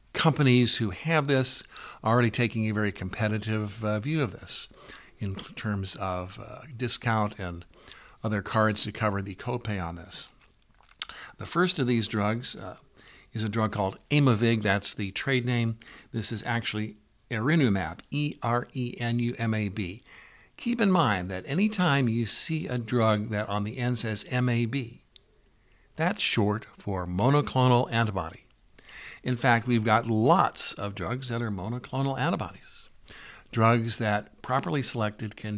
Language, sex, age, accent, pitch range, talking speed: English, male, 50-69, American, 105-125 Hz, 145 wpm